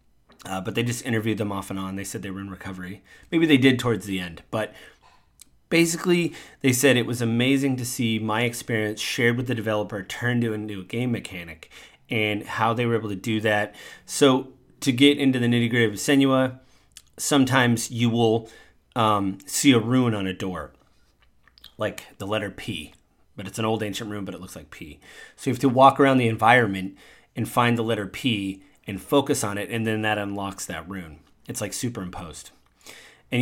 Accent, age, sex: American, 30-49, male